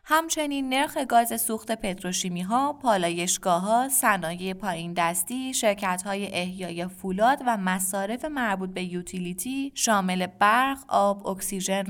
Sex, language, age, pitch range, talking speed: female, Persian, 20-39, 185-230 Hz, 100 wpm